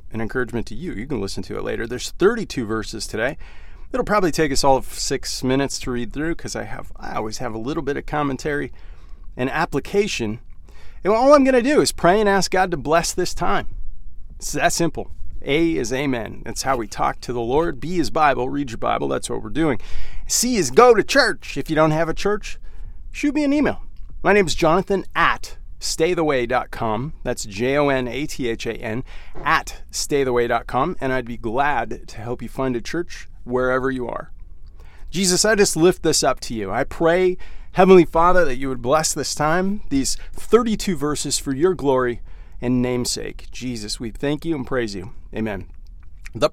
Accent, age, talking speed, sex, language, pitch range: American, 40-59, 190 wpm, male, English, 110-170 Hz